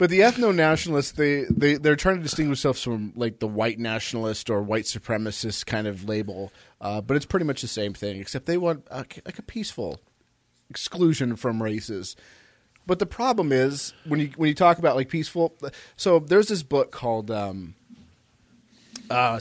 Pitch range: 110-150 Hz